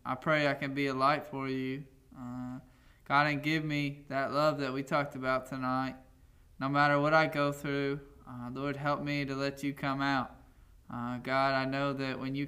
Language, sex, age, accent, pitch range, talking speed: English, male, 10-29, American, 130-145 Hz, 205 wpm